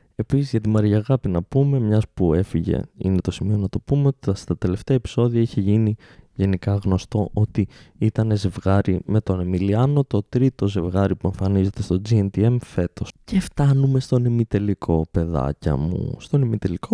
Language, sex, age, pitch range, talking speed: Greek, male, 20-39, 95-125 Hz, 160 wpm